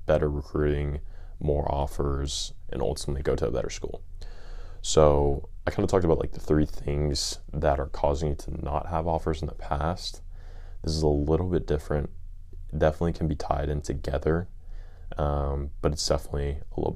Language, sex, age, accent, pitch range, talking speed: English, male, 20-39, American, 75-85 Hz, 175 wpm